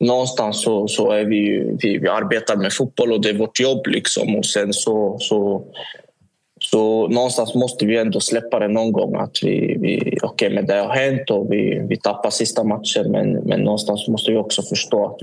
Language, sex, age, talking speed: Swedish, male, 20-39, 200 wpm